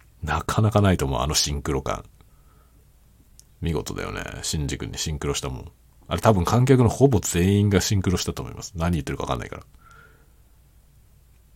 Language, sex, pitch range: Japanese, male, 75-110 Hz